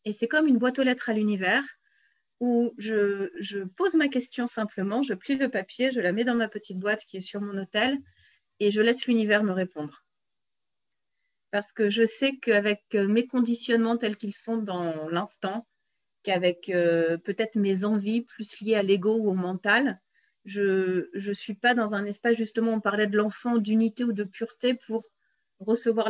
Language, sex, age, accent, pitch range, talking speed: French, female, 30-49, French, 190-235 Hz, 180 wpm